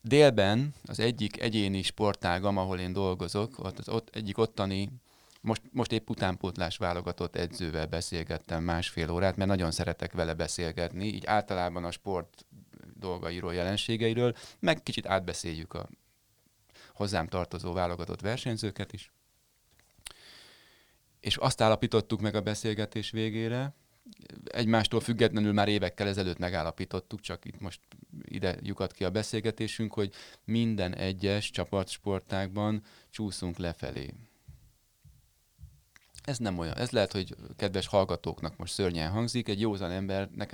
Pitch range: 90-110 Hz